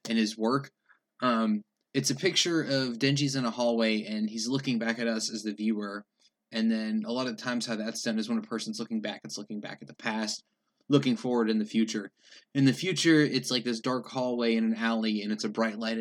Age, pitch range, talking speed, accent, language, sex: 20-39, 110-135 Hz, 235 wpm, American, English, male